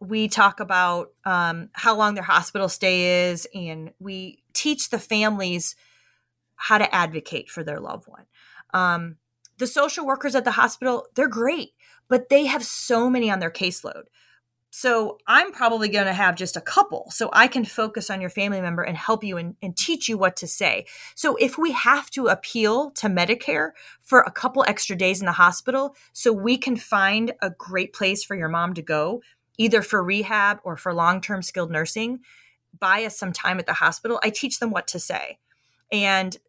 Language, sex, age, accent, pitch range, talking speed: English, female, 30-49, American, 180-235 Hz, 190 wpm